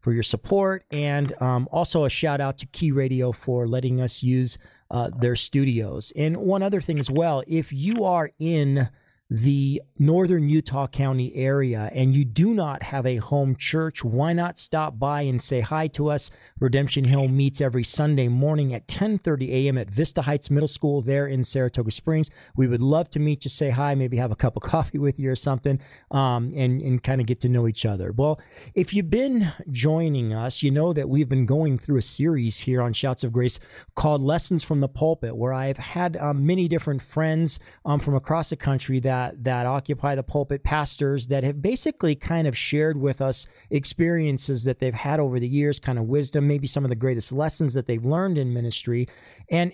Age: 40-59